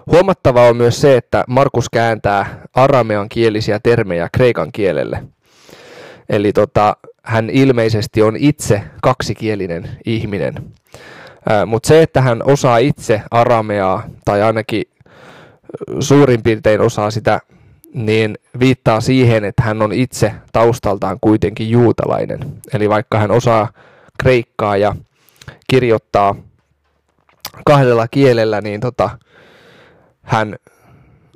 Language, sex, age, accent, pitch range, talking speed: Finnish, male, 20-39, native, 105-130 Hz, 105 wpm